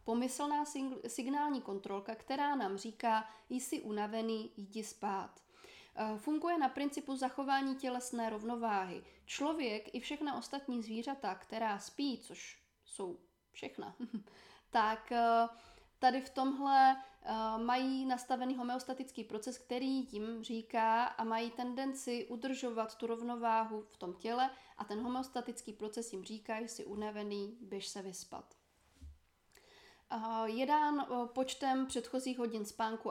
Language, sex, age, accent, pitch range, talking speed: Czech, female, 20-39, native, 220-265 Hz, 120 wpm